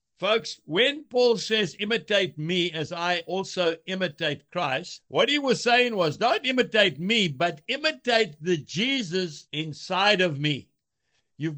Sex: male